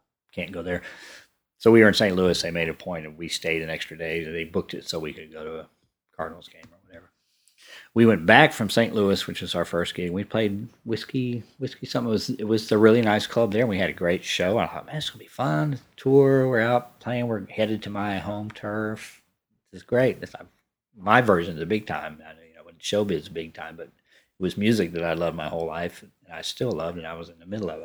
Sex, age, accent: male, 40-59, American